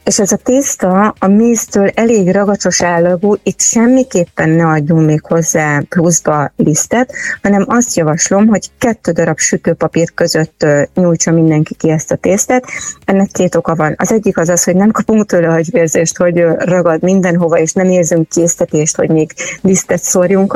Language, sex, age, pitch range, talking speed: Hungarian, female, 30-49, 165-200 Hz, 160 wpm